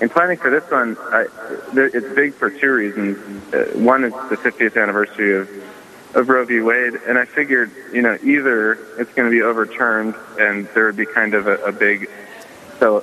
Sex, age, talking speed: male, 30-49, 195 wpm